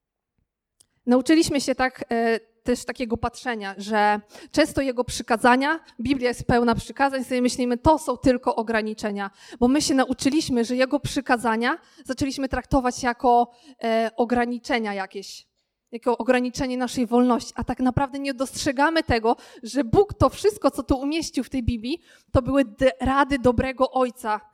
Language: Polish